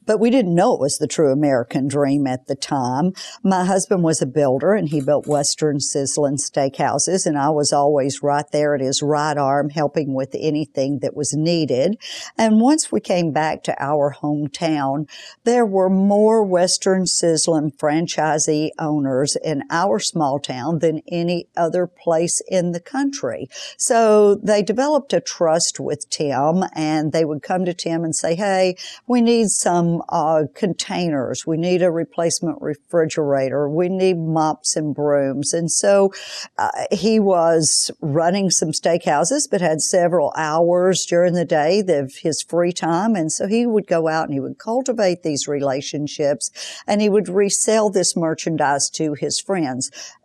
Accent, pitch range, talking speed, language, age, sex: American, 150-185 Hz, 165 wpm, English, 50-69, female